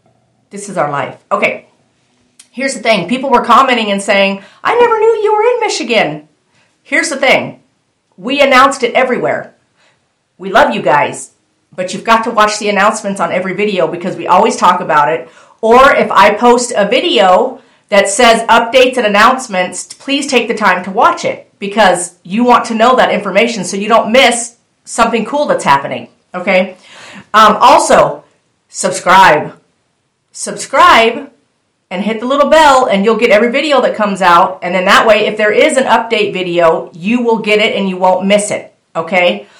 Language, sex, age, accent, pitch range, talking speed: English, female, 50-69, American, 195-250 Hz, 180 wpm